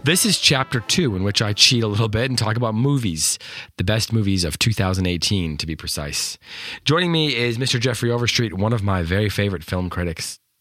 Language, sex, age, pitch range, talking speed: English, male, 30-49, 90-120 Hz, 205 wpm